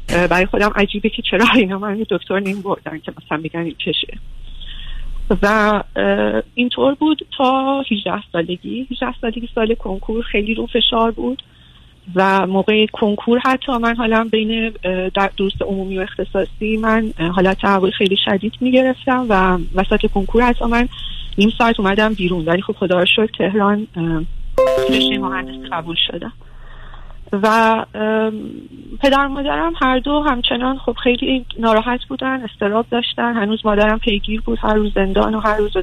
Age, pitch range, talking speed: 30-49, 190-245 Hz, 150 wpm